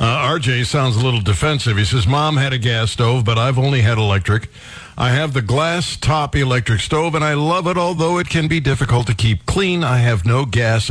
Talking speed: 225 wpm